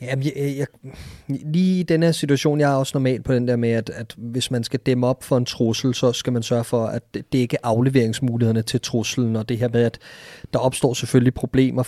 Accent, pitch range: native, 120-150 Hz